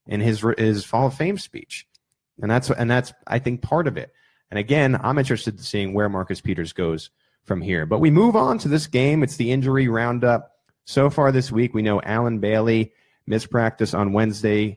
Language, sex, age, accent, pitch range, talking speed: English, male, 30-49, American, 105-130 Hz, 205 wpm